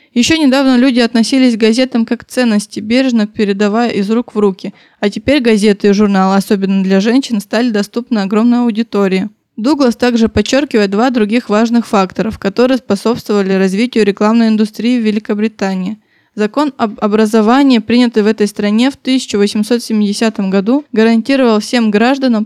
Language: Russian